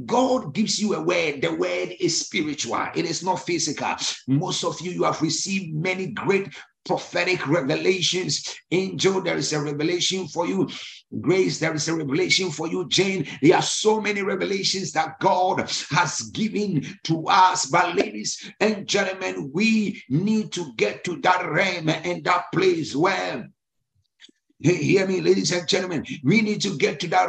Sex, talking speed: male, 165 wpm